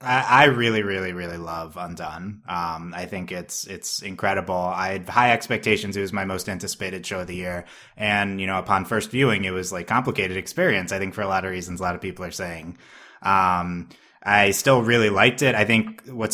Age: 20-39